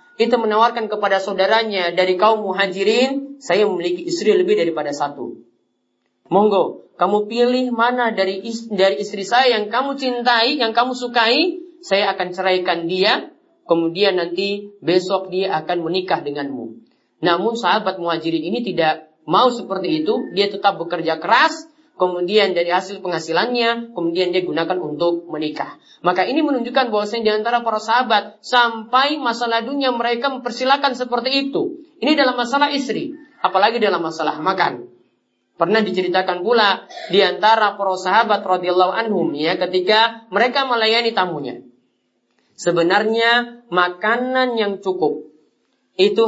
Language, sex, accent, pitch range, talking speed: Indonesian, male, native, 185-245 Hz, 130 wpm